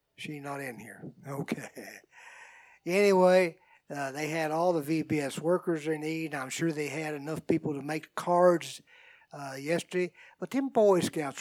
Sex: male